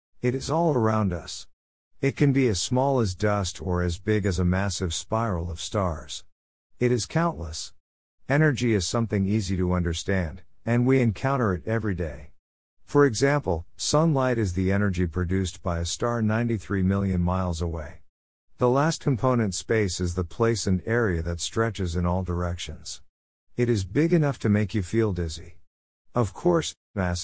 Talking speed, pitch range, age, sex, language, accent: 165 wpm, 90-120 Hz, 50-69, male, English, American